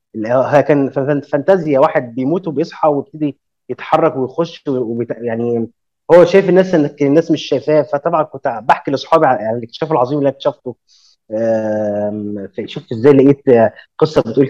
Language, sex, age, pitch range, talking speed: Arabic, male, 20-39, 125-170 Hz, 140 wpm